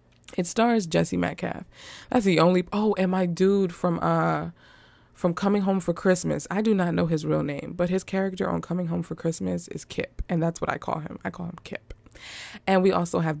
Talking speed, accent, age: 220 wpm, American, 20-39